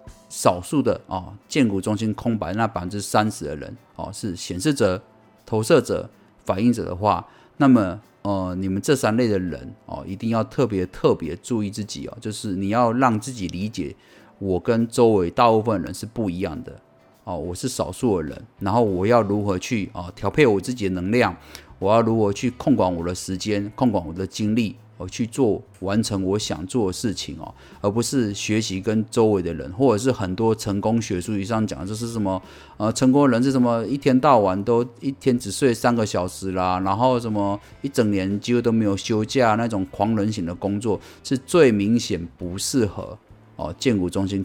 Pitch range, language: 95-115 Hz, Chinese